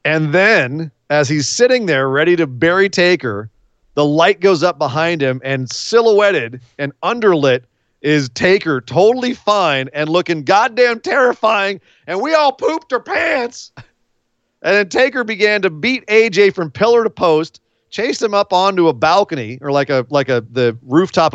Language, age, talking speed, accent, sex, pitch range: English, 40-59, 165 wpm, American, male, 125-190 Hz